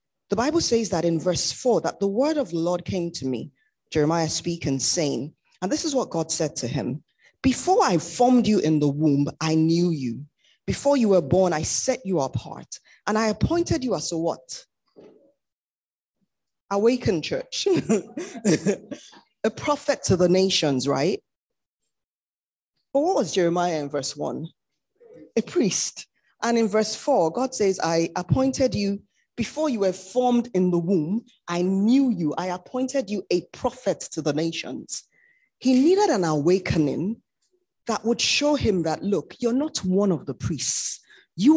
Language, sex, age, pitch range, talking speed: English, female, 20-39, 160-245 Hz, 165 wpm